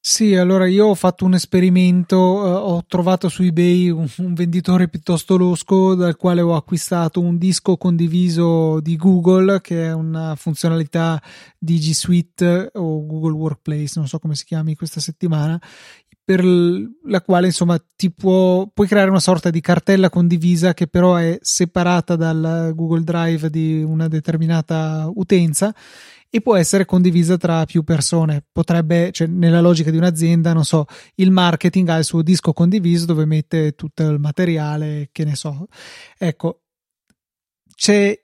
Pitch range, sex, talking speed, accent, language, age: 160-185 Hz, male, 155 wpm, native, Italian, 30-49